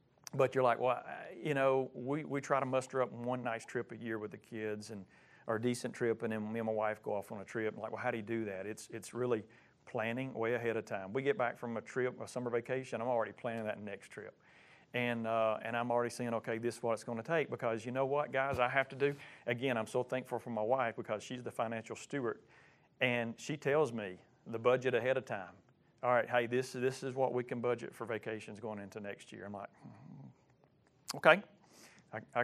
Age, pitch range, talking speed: 40-59, 110-130 Hz, 245 wpm